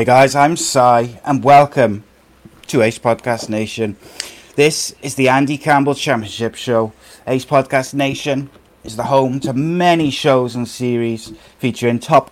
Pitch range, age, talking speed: 115-140 Hz, 30-49, 145 wpm